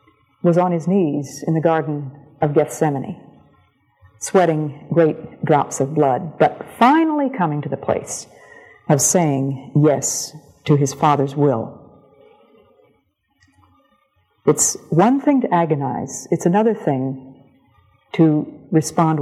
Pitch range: 145-200 Hz